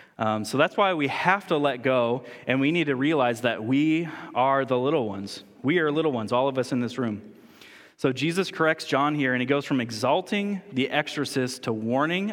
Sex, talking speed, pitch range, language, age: male, 215 wpm, 110-135 Hz, English, 20-39